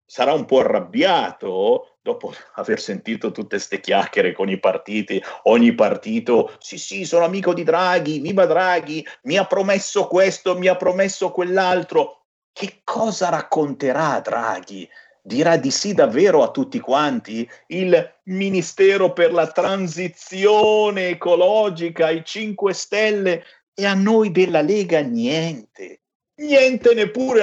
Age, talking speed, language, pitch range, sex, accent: 50-69, 130 wpm, Italian, 160-240 Hz, male, native